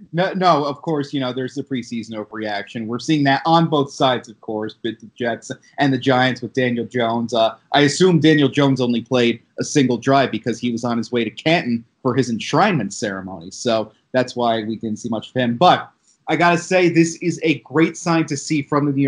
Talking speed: 230 wpm